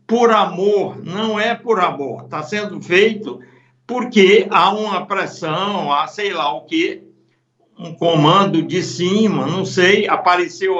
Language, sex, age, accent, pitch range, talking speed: Portuguese, male, 60-79, Brazilian, 165-215 Hz, 140 wpm